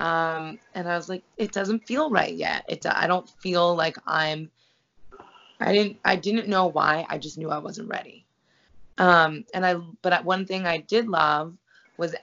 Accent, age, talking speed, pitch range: American, 20-39, 185 wpm, 150-180 Hz